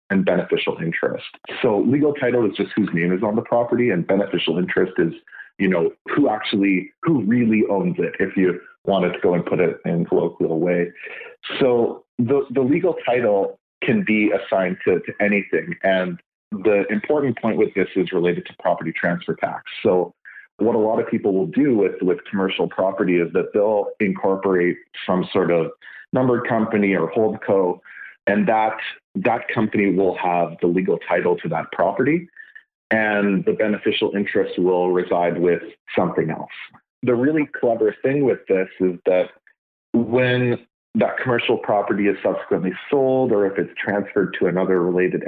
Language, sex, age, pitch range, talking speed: English, male, 40-59, 95-135 Hz, 170 wpm